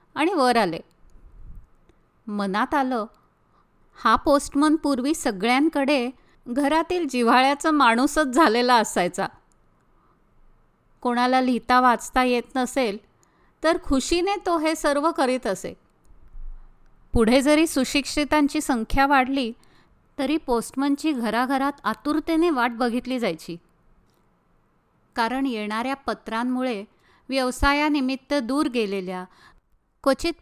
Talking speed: 70 wpm